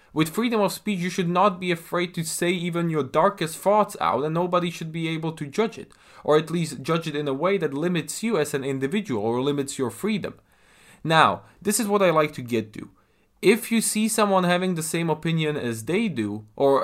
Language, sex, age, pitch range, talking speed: English, male, 20-39, 135-190 Hz, 225 wpm